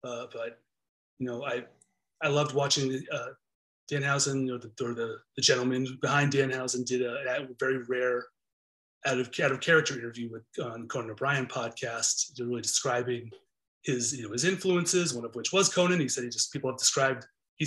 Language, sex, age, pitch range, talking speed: English, male, 30-49, 120-150 Hz, 185 wpm